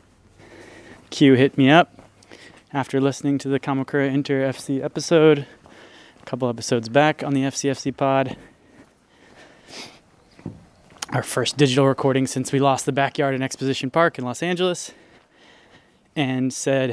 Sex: male